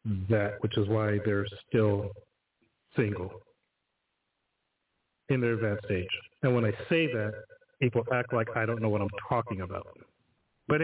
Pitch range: 110-130 Hz